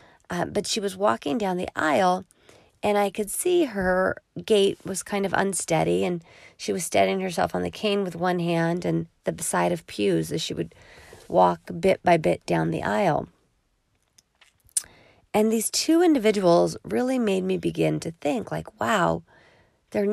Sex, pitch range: female, 155-210 Hz